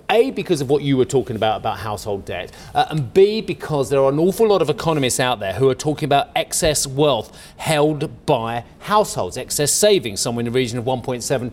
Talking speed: 215 wpm